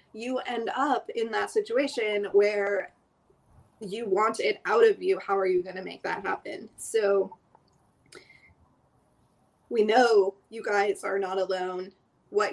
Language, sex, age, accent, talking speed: English, female, 20-39, American, 145 wpm